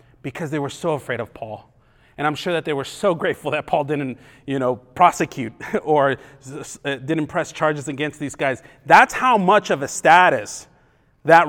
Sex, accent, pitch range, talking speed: male, American, 140-175 Hz, 185 wpm